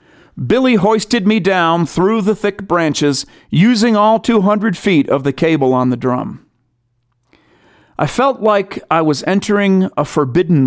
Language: English